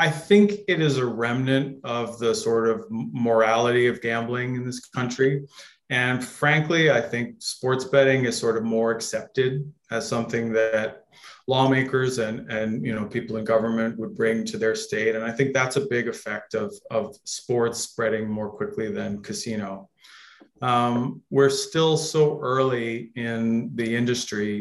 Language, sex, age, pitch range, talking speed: English, male, 30-49, 115-130 Hz, 160 wpm